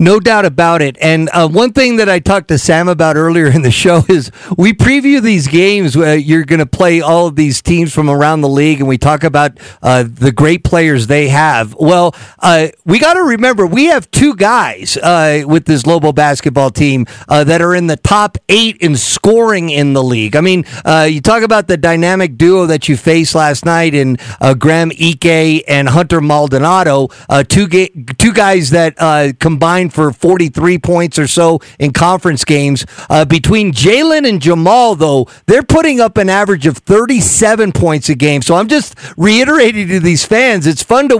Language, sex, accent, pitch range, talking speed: English, male, American, 150-200 Hz, 200 wpm